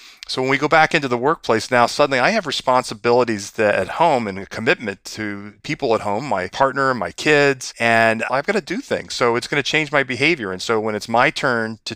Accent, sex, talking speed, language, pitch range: American, male, 230 wpm, English, 105-140 Hz